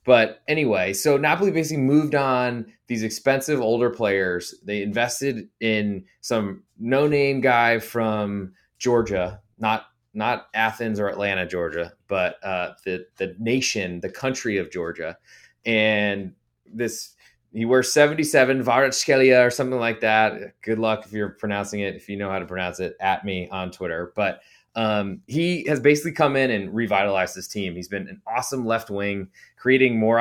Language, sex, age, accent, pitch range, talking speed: English, male, 20-39, American, 100-125 Hz, 160 wpm